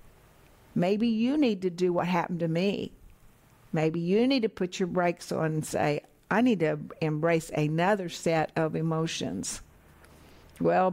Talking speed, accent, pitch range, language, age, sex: 155 wpm, American, 155-190 Hz, English, 60-79, female